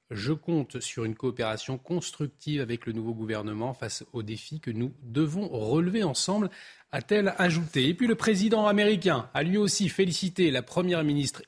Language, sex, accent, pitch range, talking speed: French, male, French, 135-195 Hz, 180 wpm